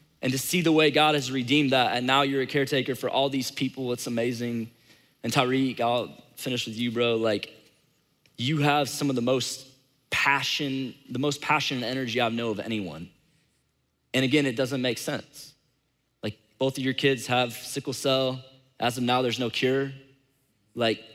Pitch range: 125-155 Hz